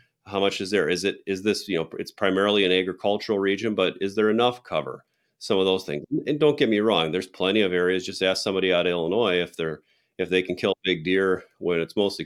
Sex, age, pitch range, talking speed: male, 40-59, 90-110 Hz, 245 wpm